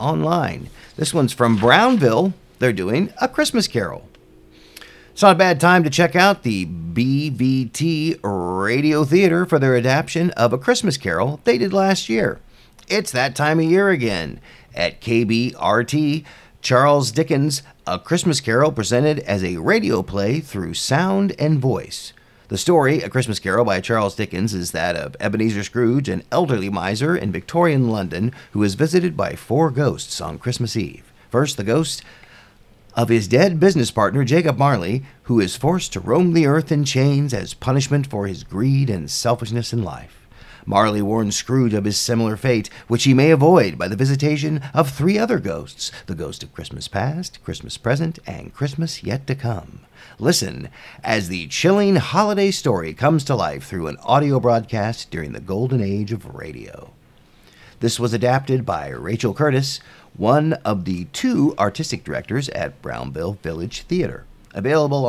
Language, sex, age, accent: English, male, 40-59, American